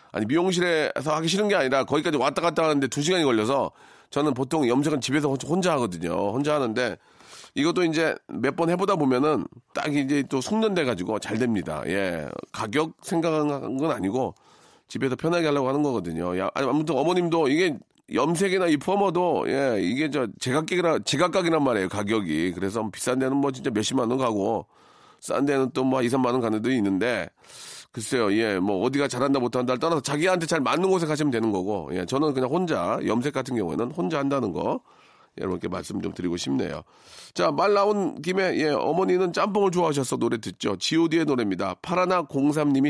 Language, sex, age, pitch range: Korean, male, 40-59, 130-180 Hz